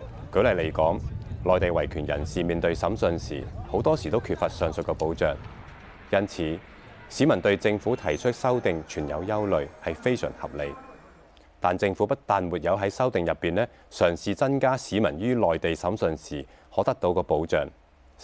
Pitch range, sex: 75-110 Hz, male